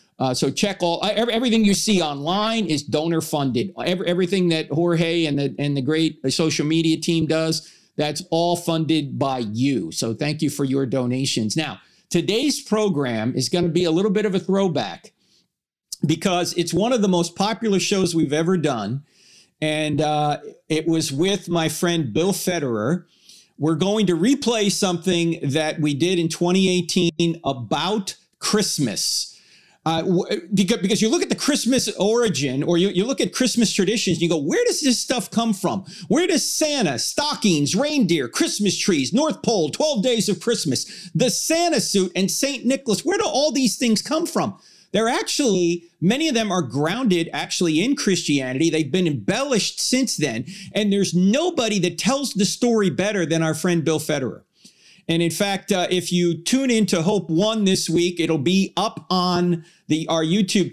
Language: English